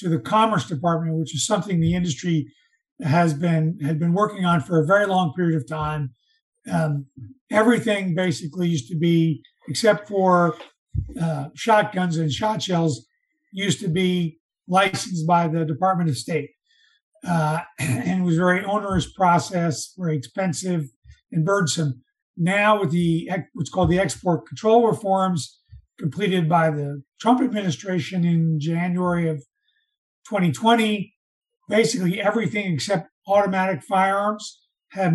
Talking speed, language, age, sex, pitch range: 135 wpm, English, 50-69, male, 160-200 Hz